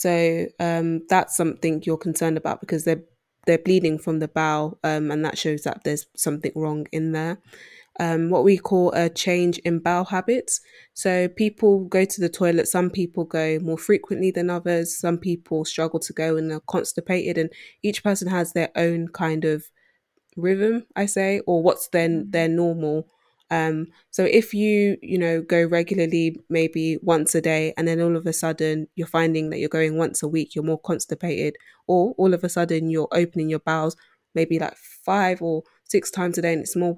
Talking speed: 195 wpm